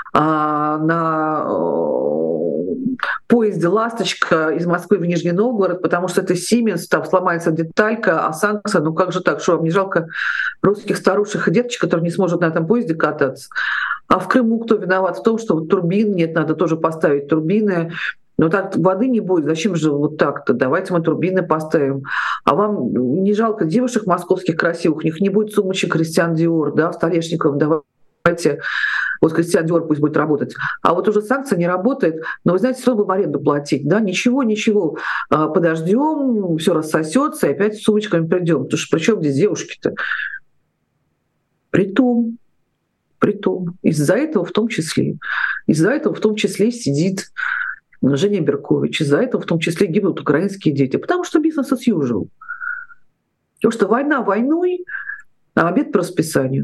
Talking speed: 160 wpm